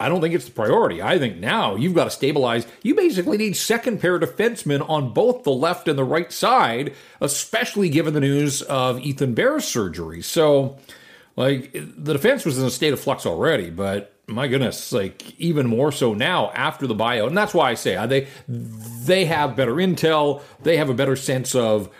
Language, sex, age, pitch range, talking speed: English, male, 40-59, 125-175 Hz, 200 wpm